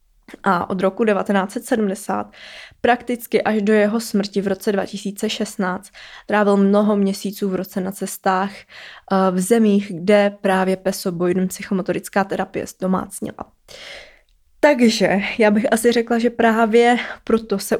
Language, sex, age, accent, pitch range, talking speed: Czech, female, 20-39, native, 190-225 Hz, 120 wpm